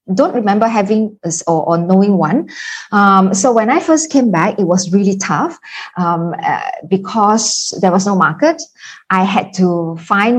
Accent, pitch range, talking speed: Malaysian, 175-235 Hz, 160 wpm